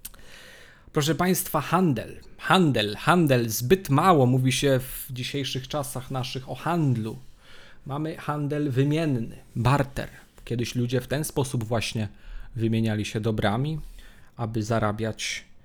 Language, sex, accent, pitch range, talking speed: Polish, male, native, 120-150 Hz, 115 wpm